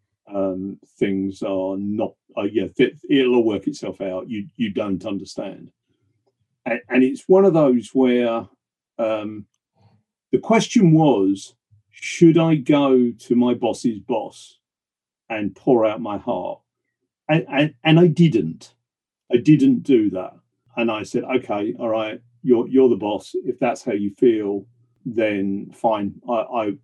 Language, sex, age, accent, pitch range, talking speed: English, male, 50-69, British, 105-155 Hz, 145 wpm